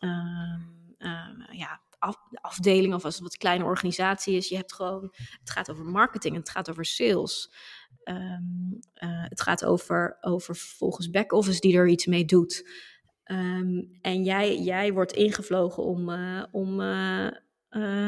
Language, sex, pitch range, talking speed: Dutch, female, 180-210 Hz, 155 wpm